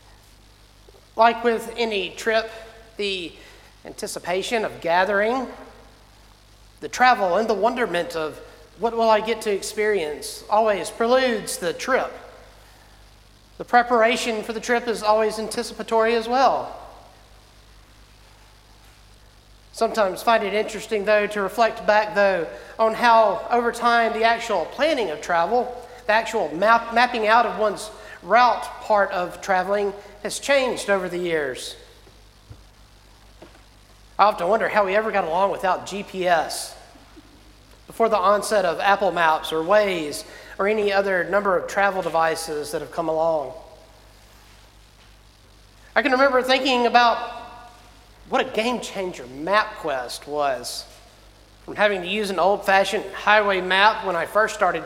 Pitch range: 155-225 Hz